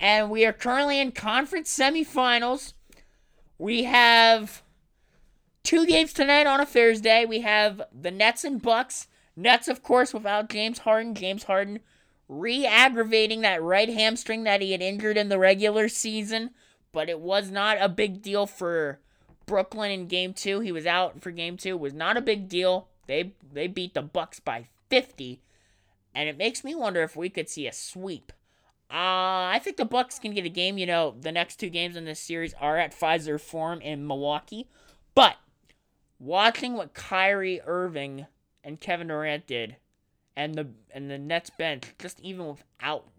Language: English